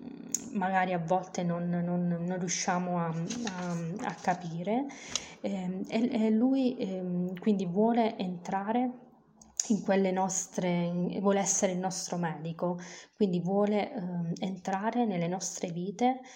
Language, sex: Italian, female